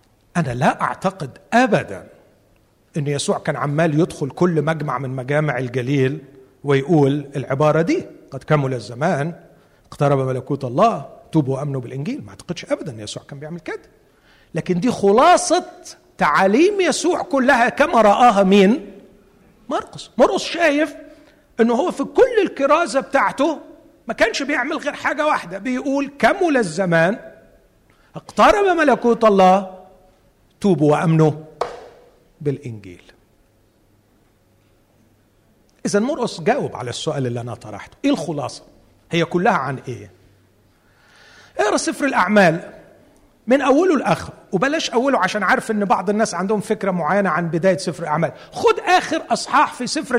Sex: male